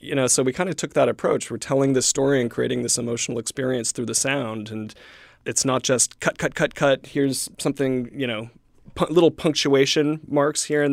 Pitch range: 110-130 Hz